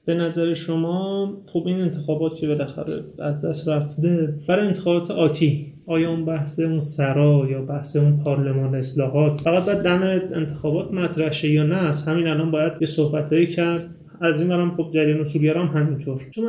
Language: Persian